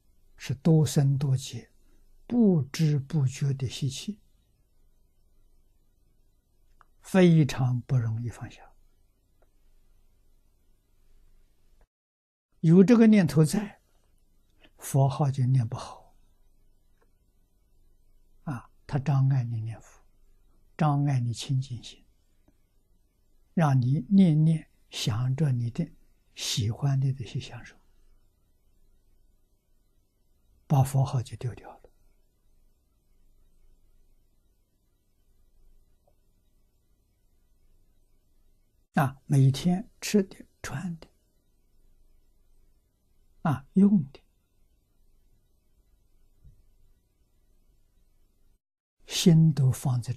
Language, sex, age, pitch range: Chinese, male, 60-79, 95-135 Hz